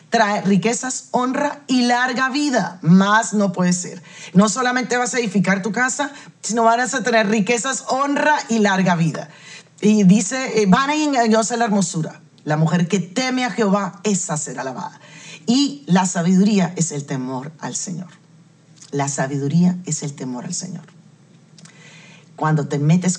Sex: female